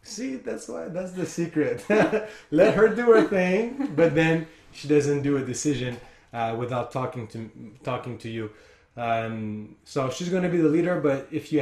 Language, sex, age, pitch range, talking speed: English, male, 20-39, 120-145 Hz, 185 wpm